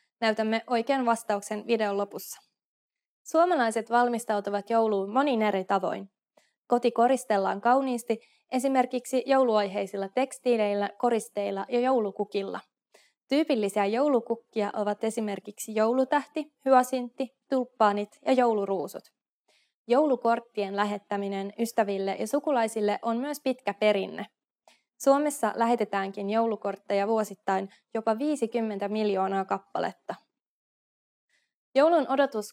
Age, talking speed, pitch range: 20-39, 90 wpm, 205-255 Hz